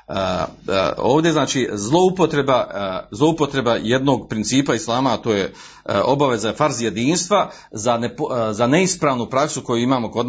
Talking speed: 145 wpm